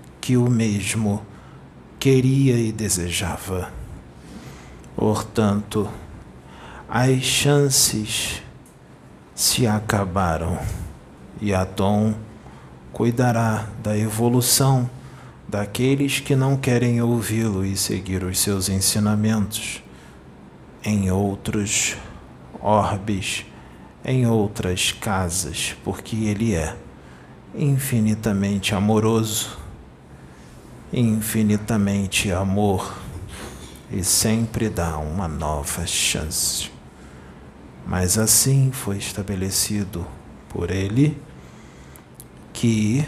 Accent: Brazilian